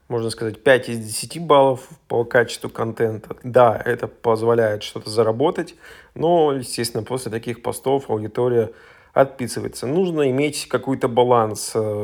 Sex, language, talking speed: male, Russian, 125 wpm